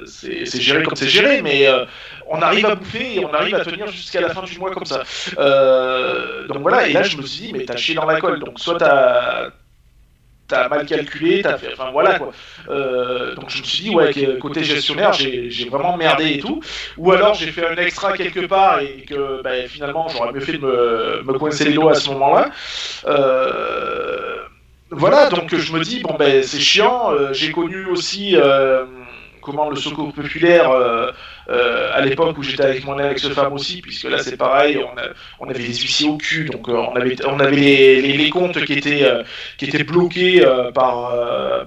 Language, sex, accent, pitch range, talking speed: French, male, French, 135-180 Hz, 215 wpm